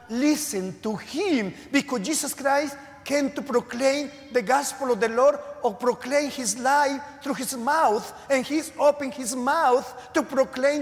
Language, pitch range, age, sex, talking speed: English, 170-260 Hz, 40-59, male, 155 wpm